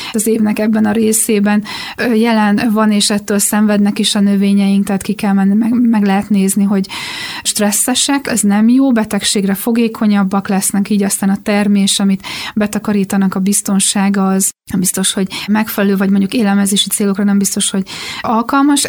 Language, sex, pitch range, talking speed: Hungarian, female, 200-225 Hz, 160 wpm